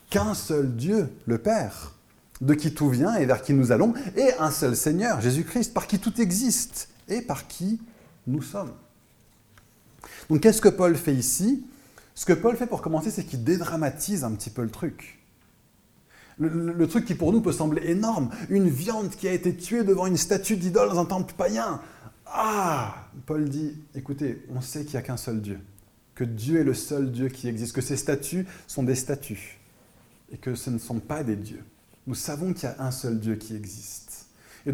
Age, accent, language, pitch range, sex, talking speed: 20-39, French, French, 115-175 Hz, male, 200 wpm